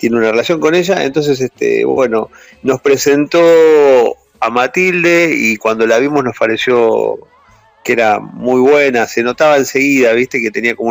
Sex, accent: male, Argentinian